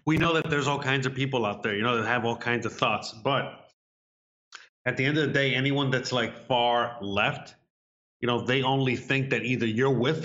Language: English